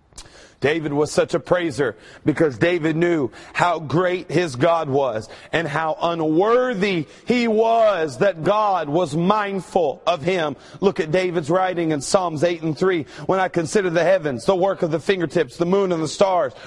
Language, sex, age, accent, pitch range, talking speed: English, male, 40-59, American, 170-215 Hz, 175 wpm